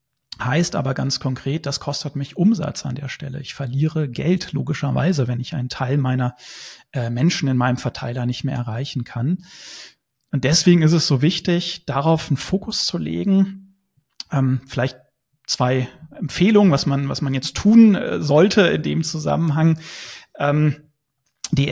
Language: German